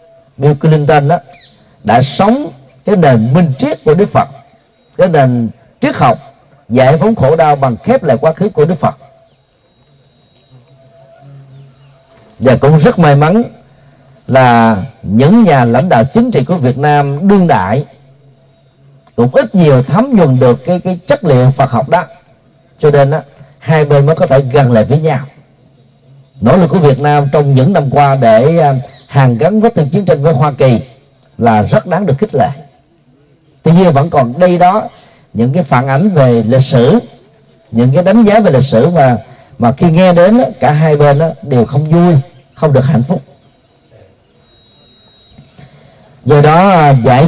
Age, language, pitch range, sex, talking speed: 40-59, Vietnamese, 130-165 Hz, male, 170 wpm